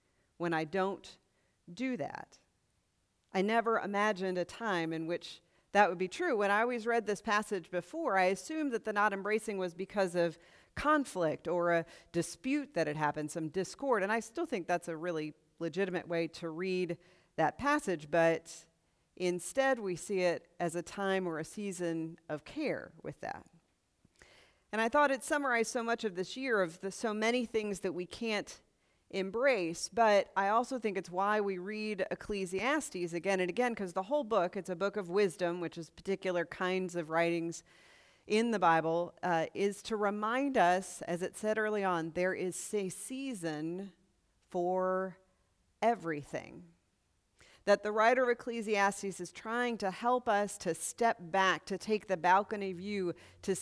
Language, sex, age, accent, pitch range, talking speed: English, female, 40-59, American, 170-215 Hz, 170 wpm